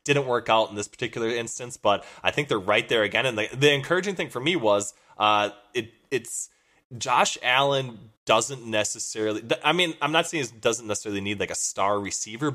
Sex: male